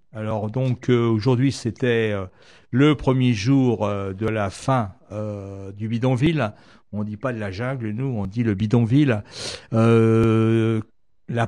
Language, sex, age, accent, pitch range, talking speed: French, male, 60-79, French, 110-130 Hz, 150 wpm